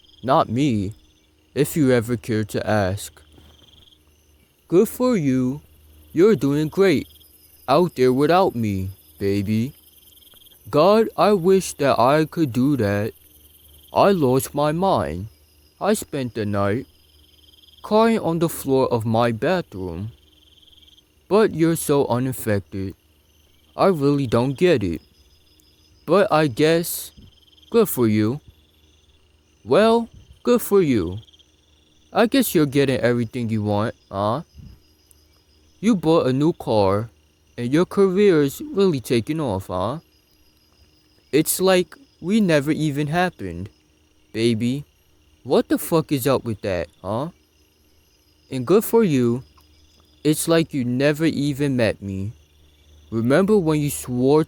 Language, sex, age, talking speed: English, male, 20-39, 120 wpm